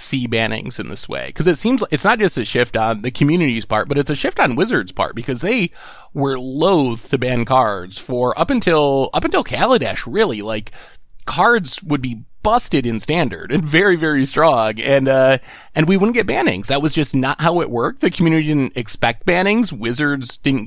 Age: 20-39